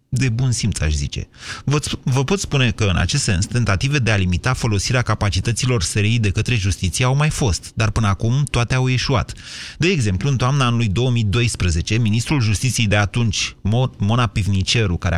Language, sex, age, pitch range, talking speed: Romanian, male, 30-49, 100-130 Hz, 180 wpm